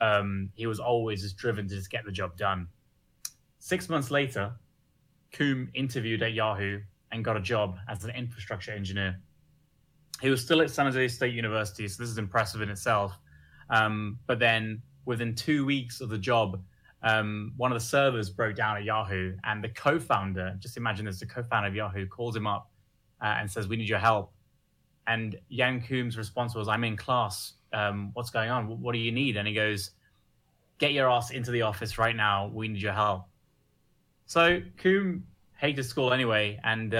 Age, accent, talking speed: 20-39, British, 190 wpm